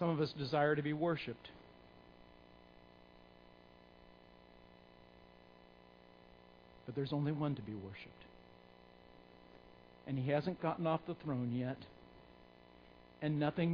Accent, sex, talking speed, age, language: American, male, 105 wpm, 50-69, English